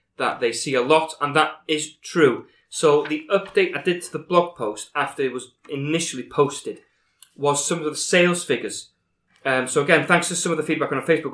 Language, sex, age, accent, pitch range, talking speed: English, male, 20-39, British, 130-165 Hz, 215 wpm